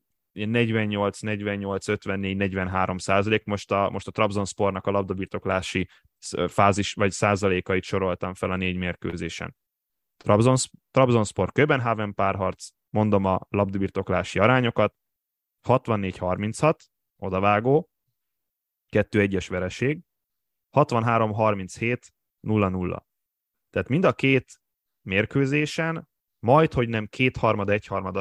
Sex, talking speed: male, 90 wpm